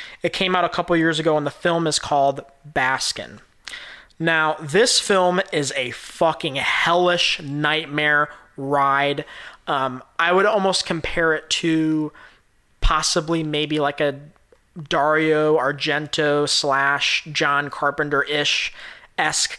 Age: 20-39